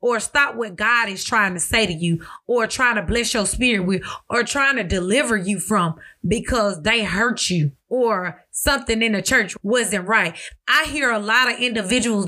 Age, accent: 20-39, American